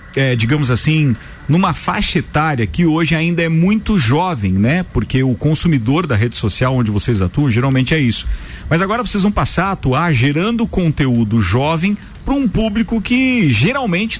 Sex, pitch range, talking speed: male, 125-175 Hz, 165 wpm